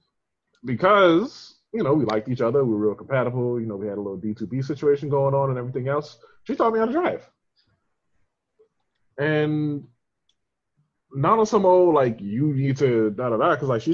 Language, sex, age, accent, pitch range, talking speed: English, male, 20-39, American, 115-150 Hz, 200 wpm